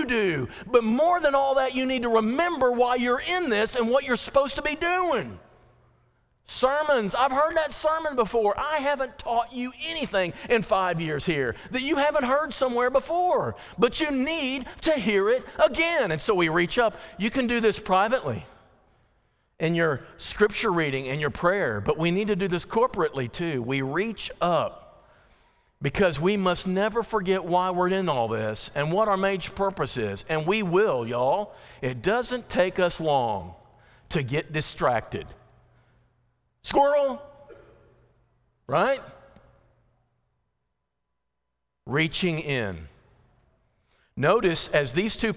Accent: American